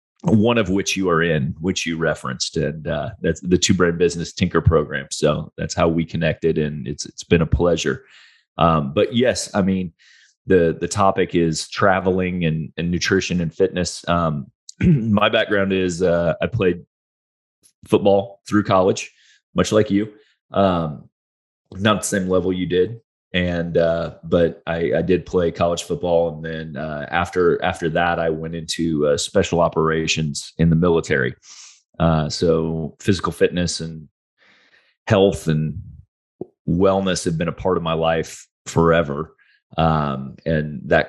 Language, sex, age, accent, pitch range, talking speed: English, male, 30-49, American, 80-95 Hz, 155 wpm